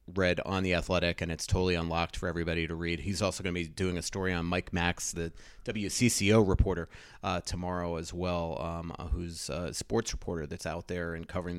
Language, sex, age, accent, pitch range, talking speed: English, male, 30-49, American, 90-105 Hz, 205 wpm